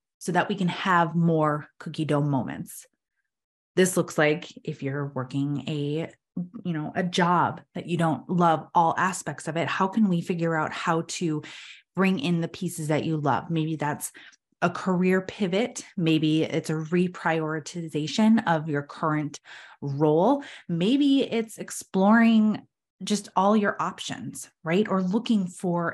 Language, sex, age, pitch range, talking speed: English, female, 20-39, 155-185 Hz, 155 wpm